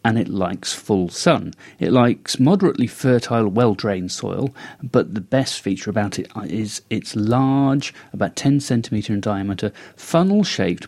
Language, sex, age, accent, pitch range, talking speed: English, male, 40-59, British, 100-130 Hz, 145 wpm